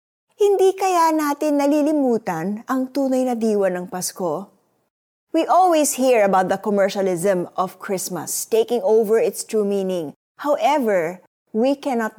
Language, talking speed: Filipino, 130 wpm